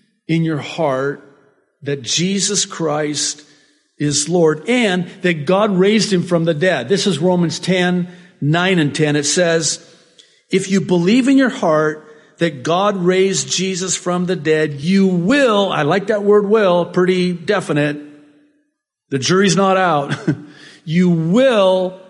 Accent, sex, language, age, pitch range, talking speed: American, male, English, 50-69, 135-185 Hz, 145 wpm